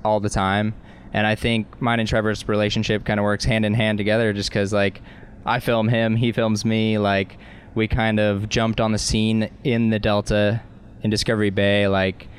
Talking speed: 200 wpm